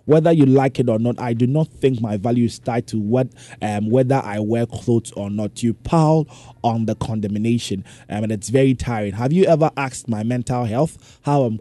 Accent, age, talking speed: Nigerian, 20-39, 215 wpm